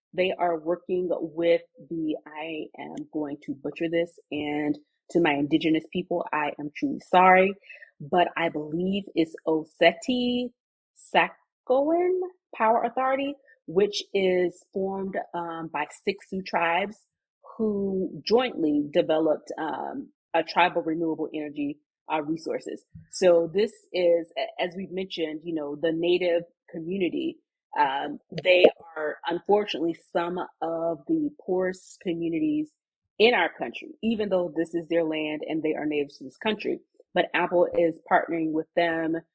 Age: 30-49